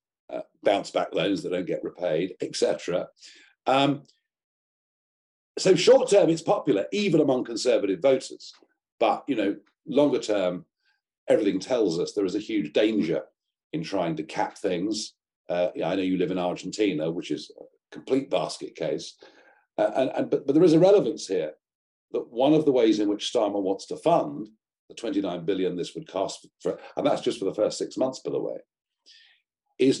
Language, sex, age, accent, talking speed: English, male, 50-69, British, 175 wpm